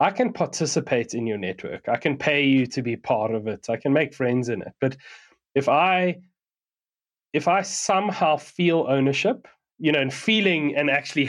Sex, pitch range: male, 125-150 Hz